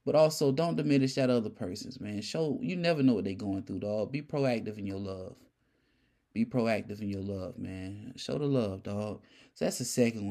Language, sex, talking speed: English, male, 210 wpm